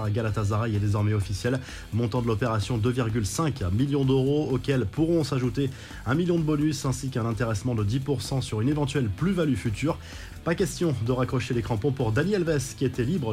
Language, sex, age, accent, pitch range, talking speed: French, male, 20-39, French, 115-145 Hz, 175 wpm